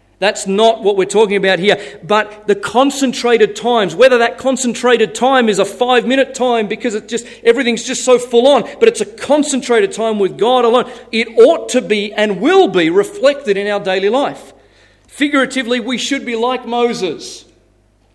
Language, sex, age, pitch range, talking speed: English, male, 40-59, 175-245 Hz, 170 wpm